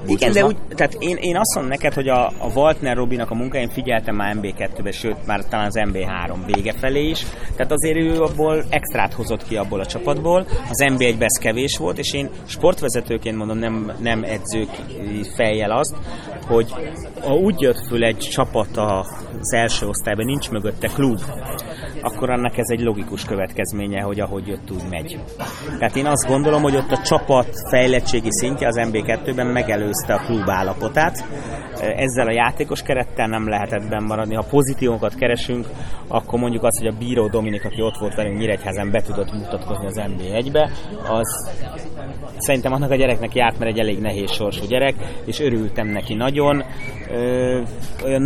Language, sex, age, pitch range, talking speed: Hungarian, male, 30-49, 110-130 Hz, 165 wpm